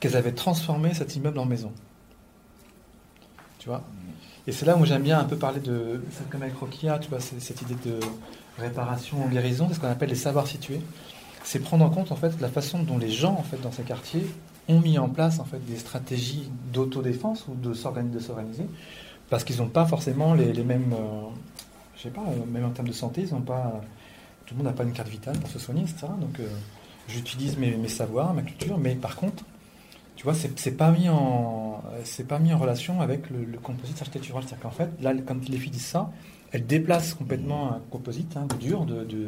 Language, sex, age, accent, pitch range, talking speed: French, male, 40-59, French, 120-155 Hz, 225 wpm